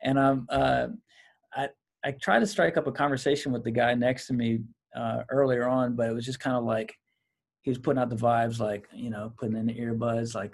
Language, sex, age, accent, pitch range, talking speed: English, male, 40-59, American, 115-135 Hz, 235 wpm